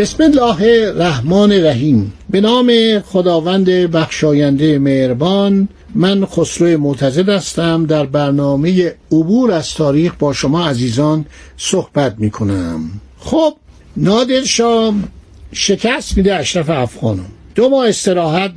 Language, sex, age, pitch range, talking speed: Persian, male, 60-79, 155-205 Hz, 105 wpm